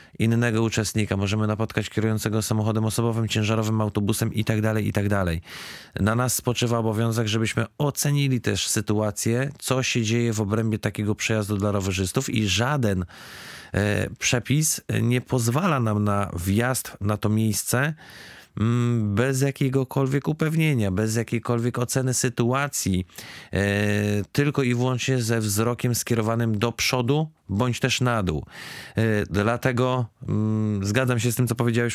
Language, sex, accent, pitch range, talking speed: Polish, male, native, 105-120 Hz, 125 wpm